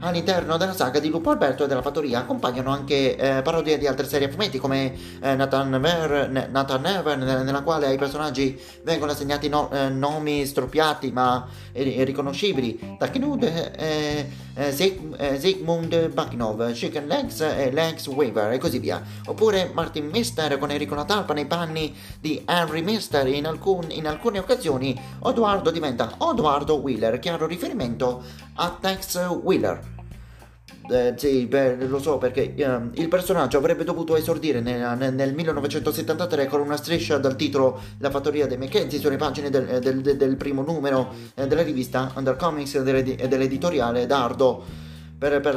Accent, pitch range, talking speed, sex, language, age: native, 130-155 Hz, 155 wpm, male, Italian, 30-49